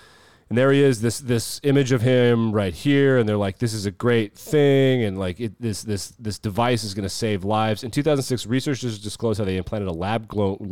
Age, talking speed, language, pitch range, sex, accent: 30-49, 230 wpm, English, 95-125 Hz, male, American